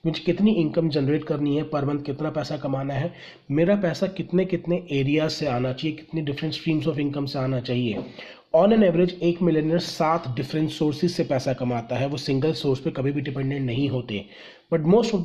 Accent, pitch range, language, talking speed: native, 145-175 Hz, Hindi, 195 wpm